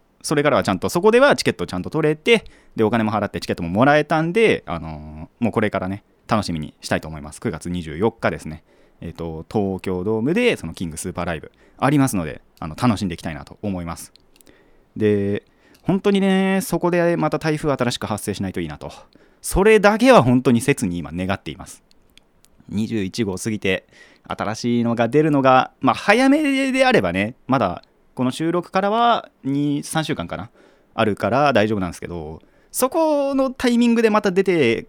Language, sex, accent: Japanese, male, native